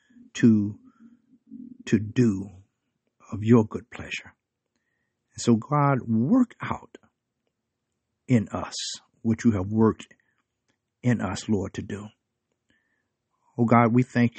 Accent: American